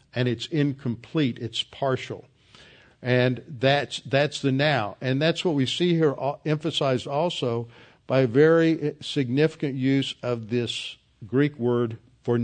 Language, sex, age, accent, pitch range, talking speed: English, male, 50-69, American, 120-135 Hz, 135 wpm